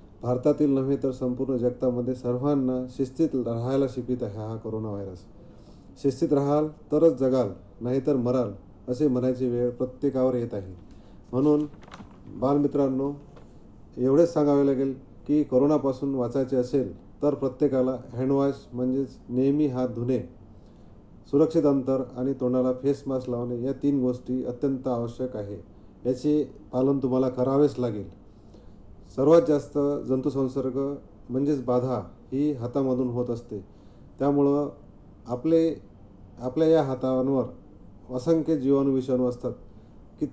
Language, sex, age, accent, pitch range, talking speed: Marathi, male, 40-59, native, 120-140 Hz, 115 wpm